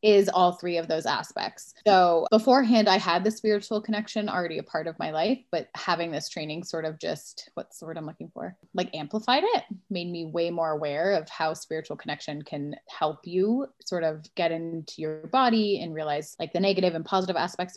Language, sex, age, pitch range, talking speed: English, female, 20-39, 165-210 Hz, 205 wpm